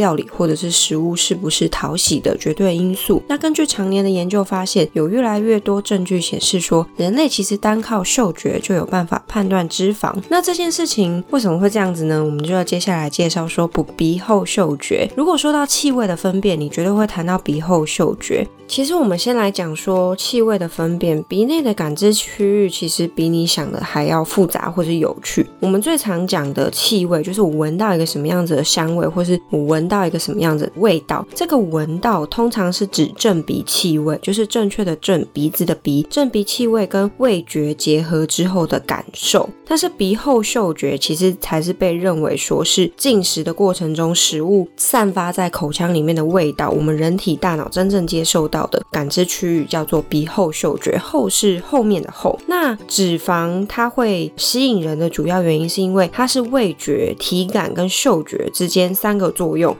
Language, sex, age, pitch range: Chinese, female, 20-39, 165-210 Hz